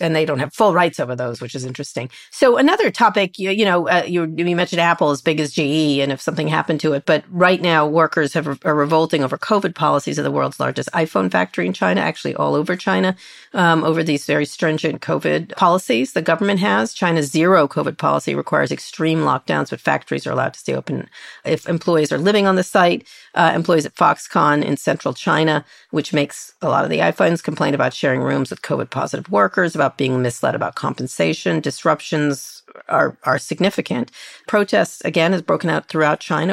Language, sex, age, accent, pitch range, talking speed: English, female, 40-59, American, 150-175 Hz, 200 wpm